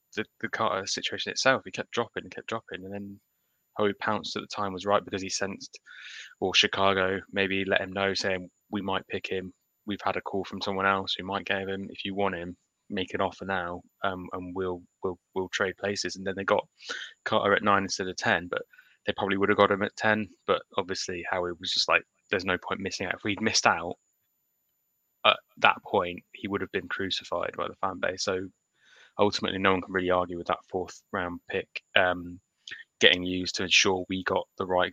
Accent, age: British, 10-29